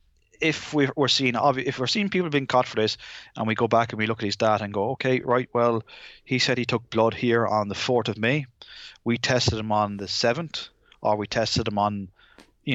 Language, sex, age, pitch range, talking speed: English, male, 20-39, 110-130 Hz, 230 wpm